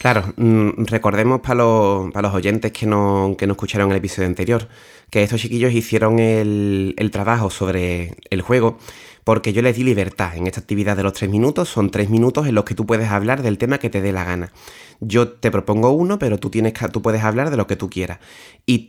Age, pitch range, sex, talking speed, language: 30-49, 100-120 Hz, male, 220 wpm, Spanish